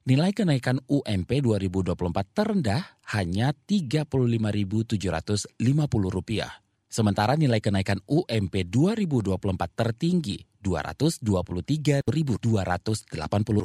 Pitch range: 95-130 Hz